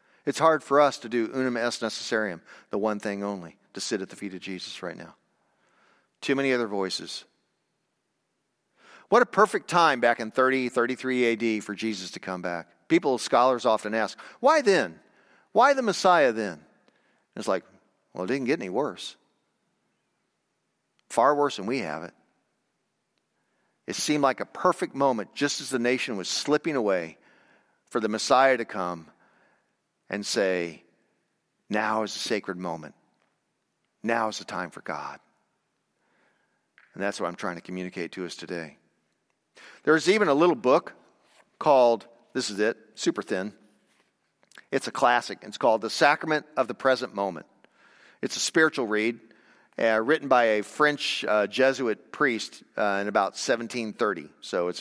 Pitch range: 95-130 Hz